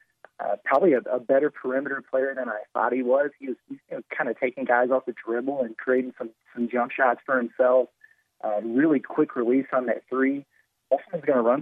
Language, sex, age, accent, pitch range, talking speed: English, male, 30-49, American, 125-150 Hz, 225 wpm